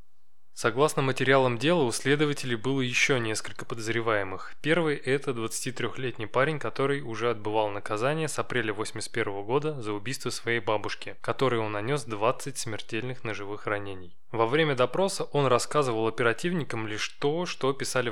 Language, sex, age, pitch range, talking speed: Russian, male, 20-39, 110-145 Hz, 140 wpm